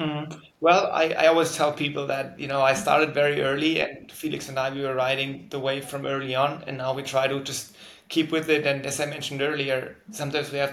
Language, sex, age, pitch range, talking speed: English, male, 30-49, 135-150 Hz, 235 wpm